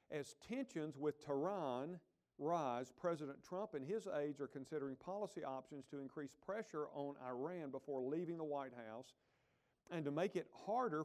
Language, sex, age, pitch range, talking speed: English, male, 50-69, 135-175 Hz, 155 wpm